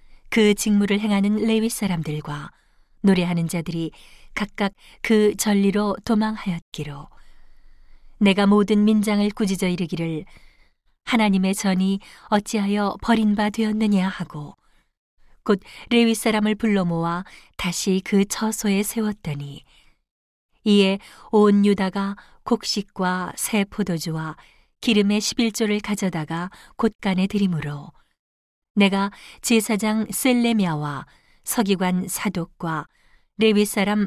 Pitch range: 180-215 Hz